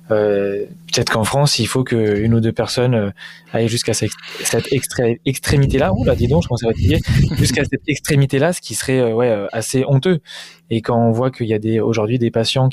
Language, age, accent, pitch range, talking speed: French, 20-39, French, 115-135 Hz, 155 wpm